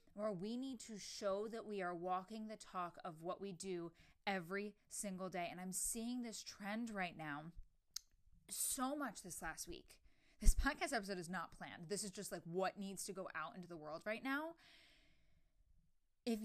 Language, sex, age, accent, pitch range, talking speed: English, female, 20-39, American, 175-255 Hz, 185 wpm